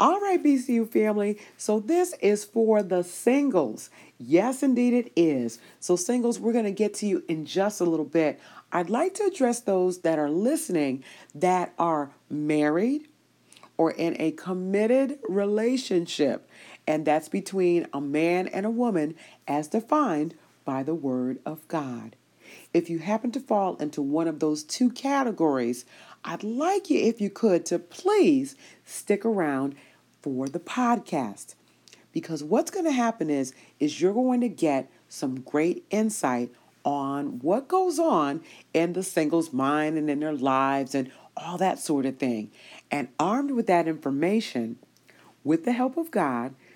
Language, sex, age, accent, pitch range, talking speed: English, female, 40-59, American, 150-225 Hz, 160 wpm